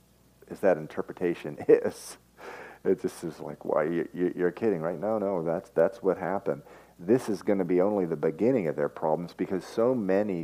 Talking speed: 185 wpm